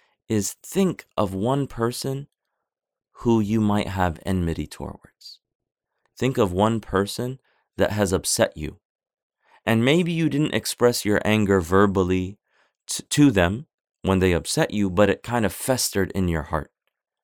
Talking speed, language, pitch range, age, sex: 145 wpm, English, 95-125 Hz, 30-49, male